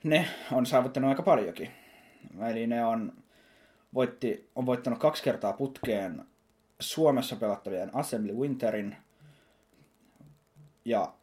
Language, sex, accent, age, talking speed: Finnish, male, native, 20-39, 100 wpm